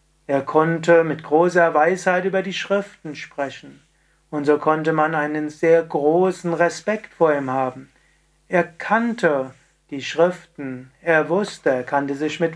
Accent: German